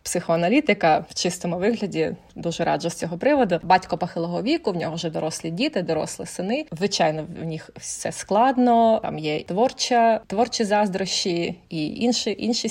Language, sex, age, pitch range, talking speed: Ukrainian, female, 20-39, 165-195 Hz, 150 wpm